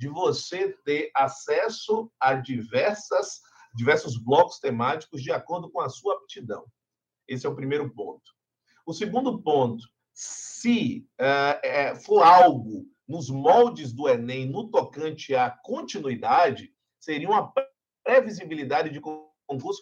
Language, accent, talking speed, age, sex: Portuguese, Brazilian, 125 wpm, 50-69, male